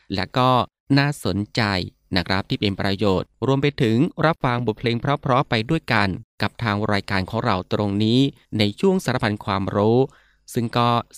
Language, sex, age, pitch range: Thai, male, 20-39, 100-130 Hz